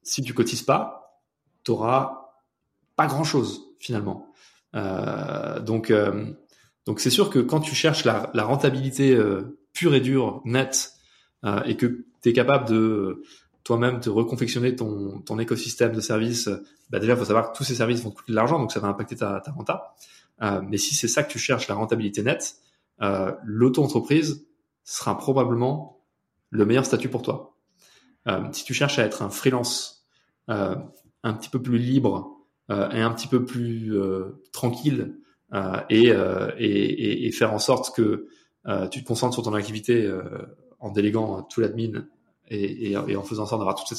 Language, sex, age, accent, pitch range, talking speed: French, male, 20-39, French, 105-130 Hz, 185 wpm